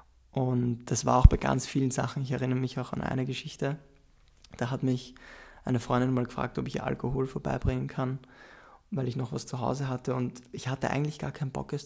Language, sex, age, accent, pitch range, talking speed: German, male, 20-39, German, 125-135 Hz, 210 wpm